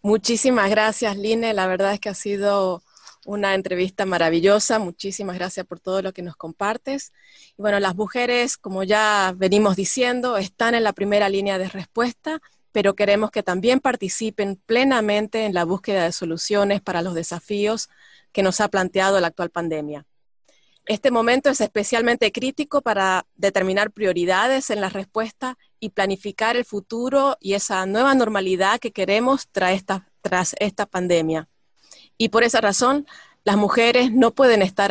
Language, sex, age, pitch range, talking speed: Spanish, female, 30-49, 185-230 Hz, 155 wpm